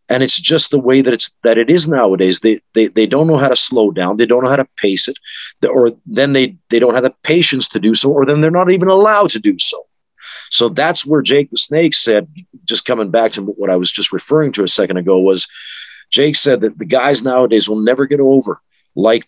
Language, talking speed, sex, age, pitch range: English, 245 wpm, male, 50-69, 105-140 Hz